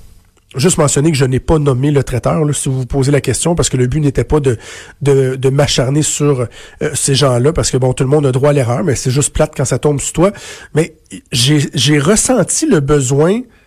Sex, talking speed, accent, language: male, 240 wpm, Canadian, French